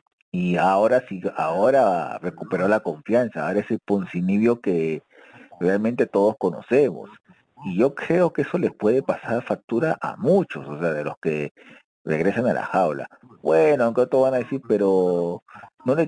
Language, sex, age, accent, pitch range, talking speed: Spanish, male, 40-59, Argentinian, 105-130 Hz, 160 wpm